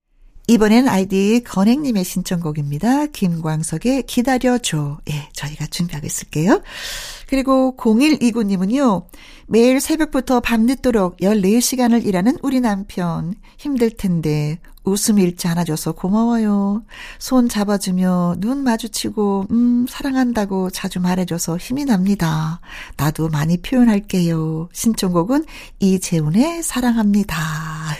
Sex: female